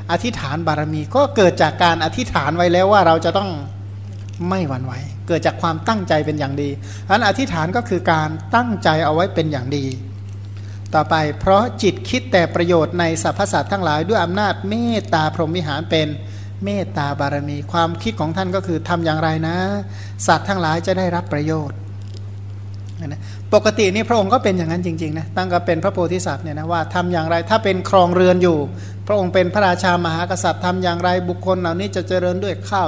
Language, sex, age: Thai, male, 60-79